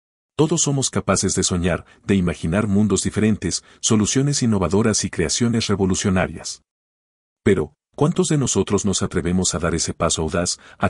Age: 50-69